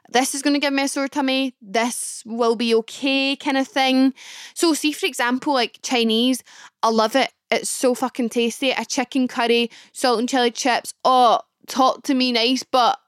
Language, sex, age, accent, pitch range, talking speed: English, female, 10-29, British, 230-270 Hz, 195 wpm